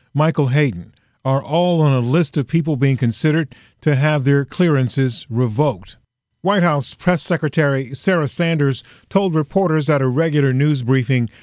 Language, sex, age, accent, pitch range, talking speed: English, male, 50-69, American, 130-160 Hz, 150 wpm